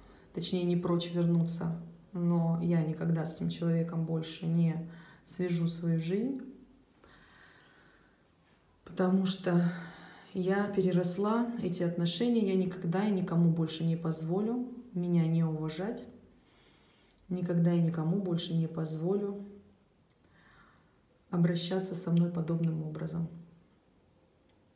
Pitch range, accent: 170-190 Hz, native